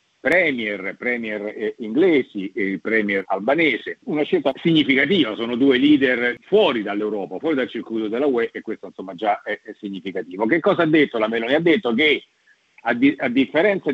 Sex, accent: male, native